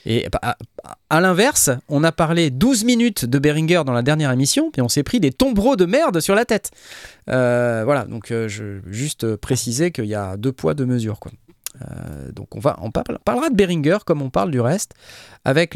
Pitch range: 110-155 Hz